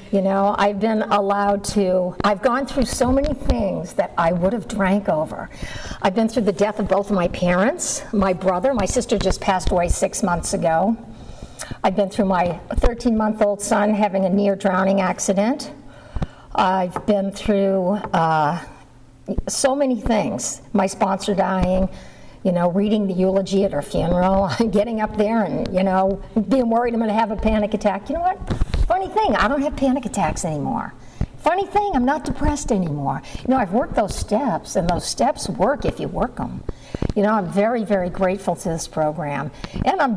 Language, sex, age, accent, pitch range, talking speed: English, female, 60-79, American, 190-225 Hz, 185 wpm